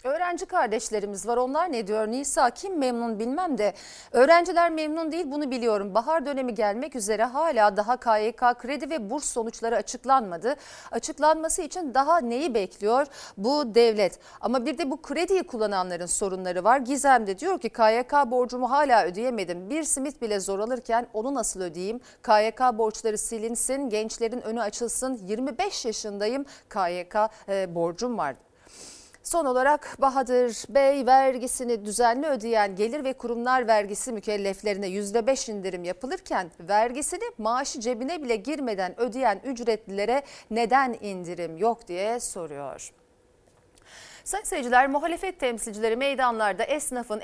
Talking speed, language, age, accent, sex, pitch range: 130 wpm, Turkish, 40-59, native, female, 215-275 Hz